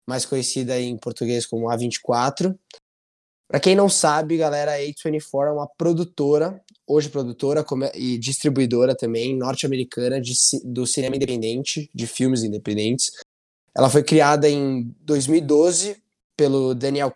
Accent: Brazilian